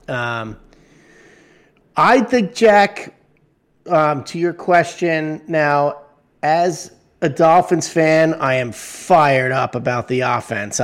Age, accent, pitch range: 30-49, American, 120-155 Hz